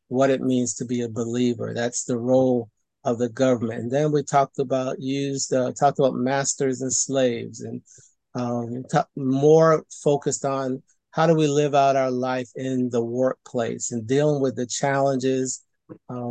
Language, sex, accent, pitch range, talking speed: English, male, American, 125-145 Hz, 170 wpm